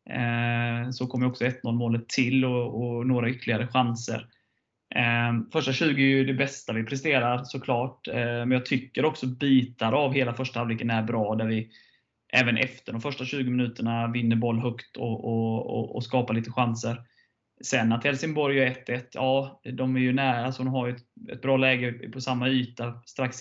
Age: 20-39